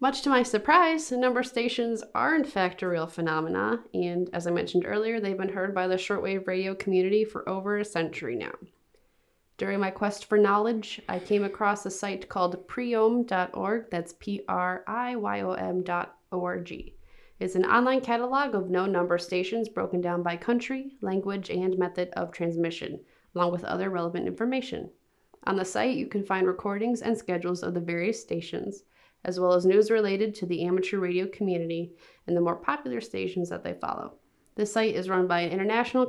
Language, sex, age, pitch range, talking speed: English, female, 20-39, 175-225 Hz, 175 wpm